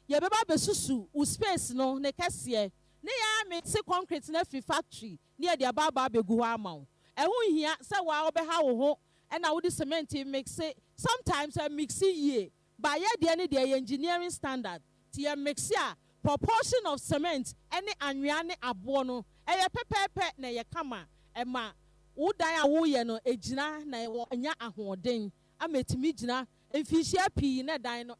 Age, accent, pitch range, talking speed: 40-59, Nigerian, 255-345 Hz, 170 wpm